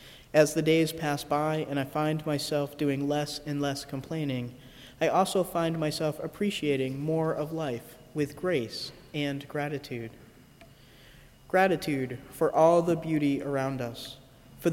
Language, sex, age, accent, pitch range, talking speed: English, male, 30-49, American, 135-170 Hz, 140 wpm